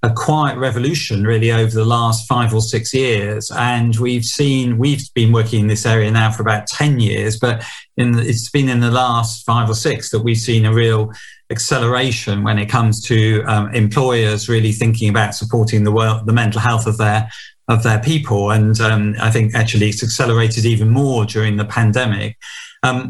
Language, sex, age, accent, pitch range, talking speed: English, male, 40-59, British, 110-125 Hz, 195 wpm